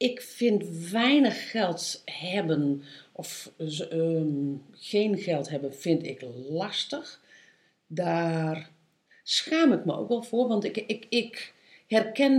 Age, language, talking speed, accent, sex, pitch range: 50-69, Dutch, 110 wpm, Dutch, female, 155-205 Hz